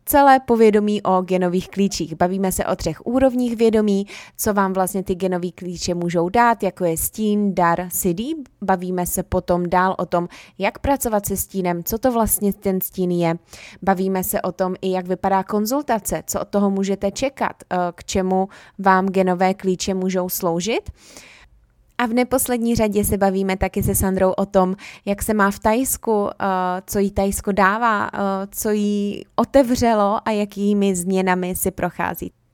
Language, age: Czech, 20-39